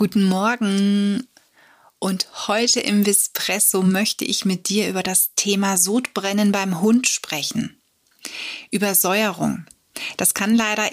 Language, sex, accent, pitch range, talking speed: German, female, German, 185-220 Hz, 115 wpm